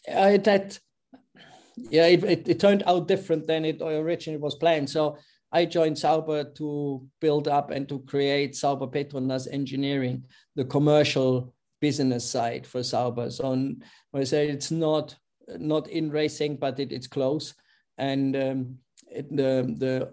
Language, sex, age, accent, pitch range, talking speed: English, male, 50-69, German, 130-145 Hz, 150 wpm